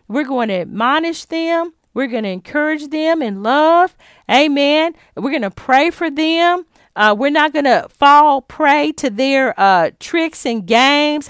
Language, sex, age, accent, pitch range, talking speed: English, female, 40-59, American, 235-320 Hz, 170 wpm